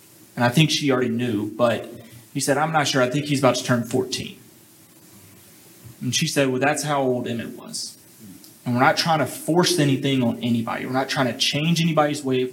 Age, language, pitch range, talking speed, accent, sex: 30-49, English, 120-140 Hz, 215 wpm, American, male